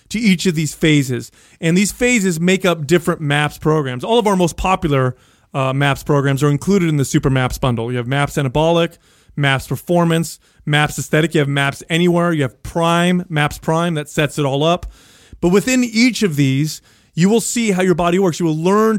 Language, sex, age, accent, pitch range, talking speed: English, male, 30-49, American, 140-180 Hz, 205 wpm